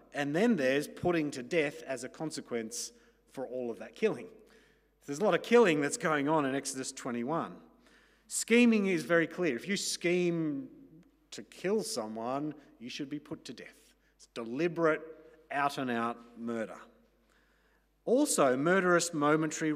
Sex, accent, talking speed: male, Australian, 145 wpm